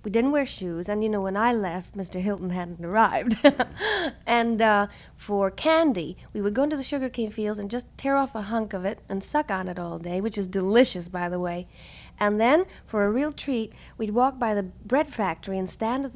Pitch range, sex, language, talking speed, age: 190-230 Hz, female, English, 225 wpm, 40-59